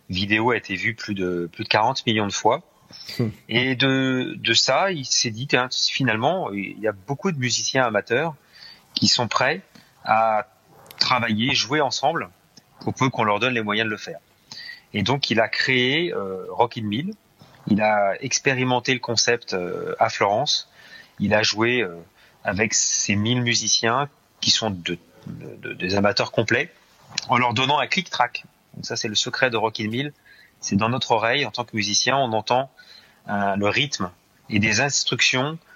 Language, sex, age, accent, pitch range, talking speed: French, male, 30-49, French, 105-130 Hz, 180 wpm